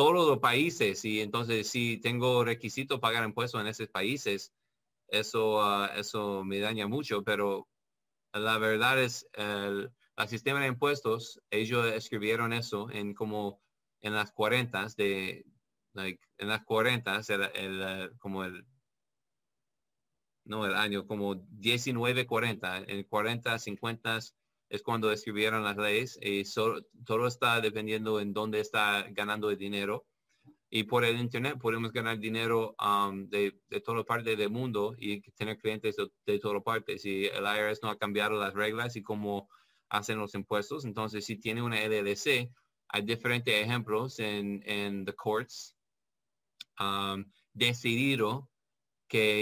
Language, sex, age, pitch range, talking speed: Spanish, male, 30-49, 105-115 Hz, 150 wpm